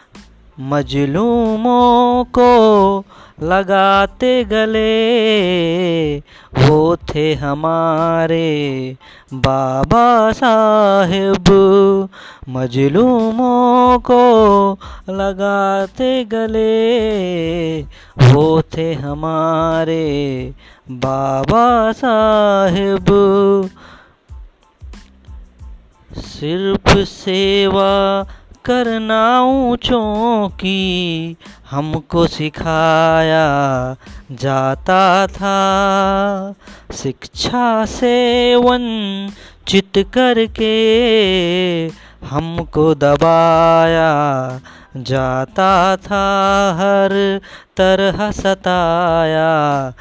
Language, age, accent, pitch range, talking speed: Hindi, 20-39, native, 155-205 Hz, 45 wpm